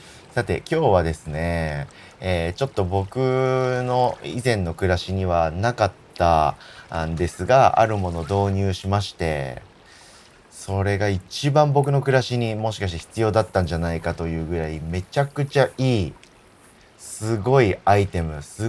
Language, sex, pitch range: Japanese, male, 85-120 Hz